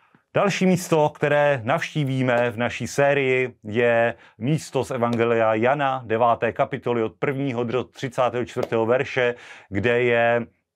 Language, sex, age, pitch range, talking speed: Slovak, male, 30-49, 125-160 Hz, 115 wpm